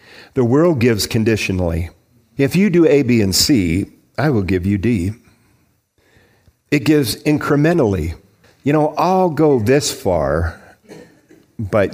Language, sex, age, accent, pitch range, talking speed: English, male, 50-69, American, 95-120 Hz, 130 wpm